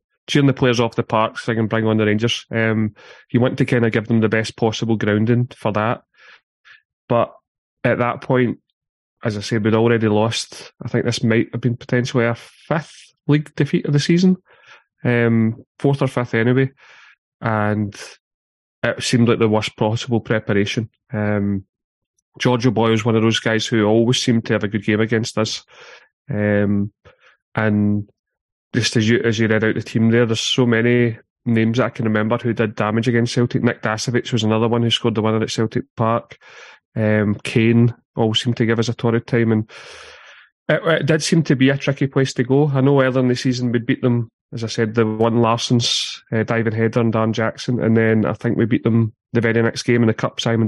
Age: 30-49